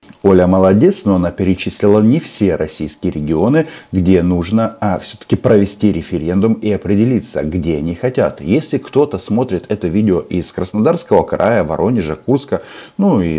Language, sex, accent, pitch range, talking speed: Russian, male, native, 90-110 Hz, 145 wpm